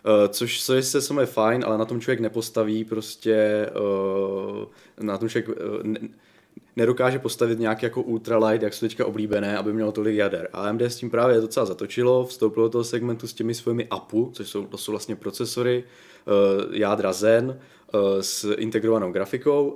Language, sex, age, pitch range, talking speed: Czech, male, 20-39, 105-120 Hz, 175 wpm